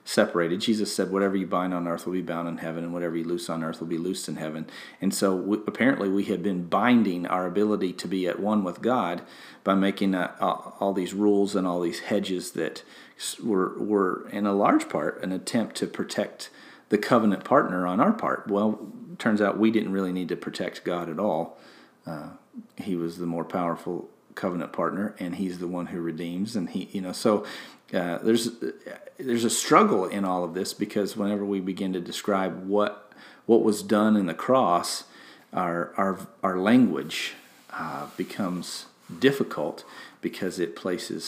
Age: 40-59